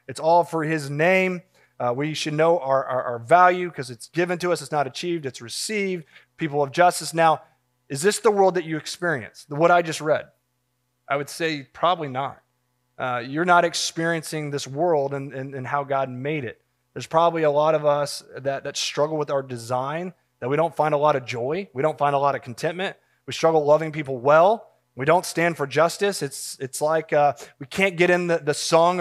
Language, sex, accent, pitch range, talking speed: English, male, American, 135-170 Hz, 215 wpm